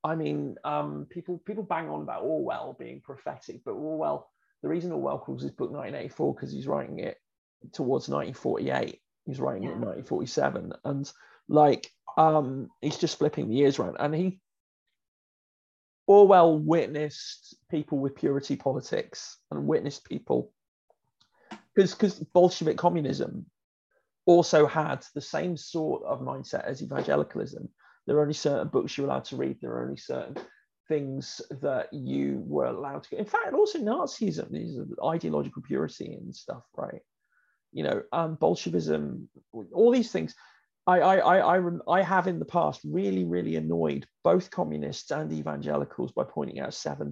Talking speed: 155 wpm